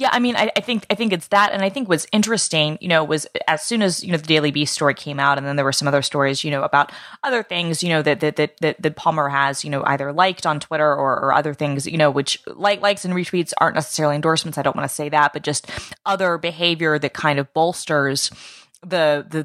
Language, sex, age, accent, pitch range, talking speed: English, female, 20-39, American, 145-175 Hz, 260 wpm